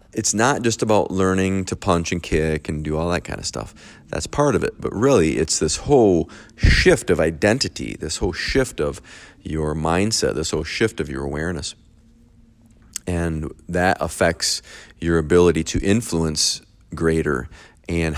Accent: American